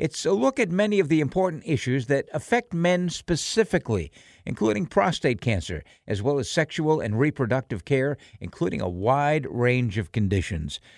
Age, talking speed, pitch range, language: 60-79, 160 wpm, 115-155 Hz, English